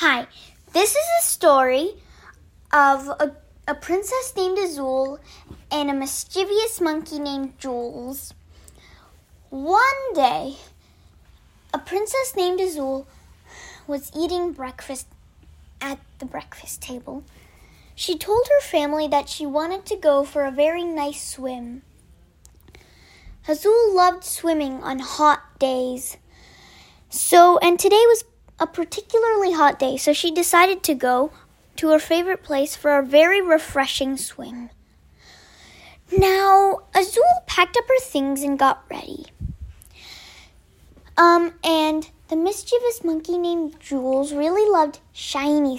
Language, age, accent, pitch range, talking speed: Hindi, 10-29, American, 275-360 Hz, 120 wpm